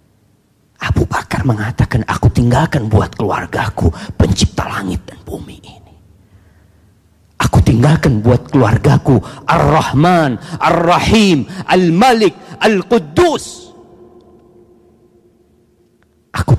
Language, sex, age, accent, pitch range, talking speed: Indonesian, male, 40-59, native, 95-145 Hz, 75 wpm